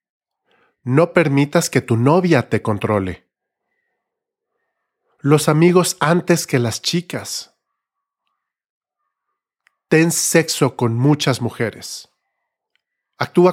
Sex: male